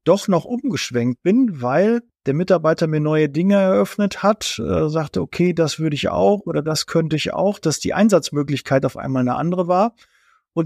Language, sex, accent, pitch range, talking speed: German, male, German, 150-180 Hz, 185 wpm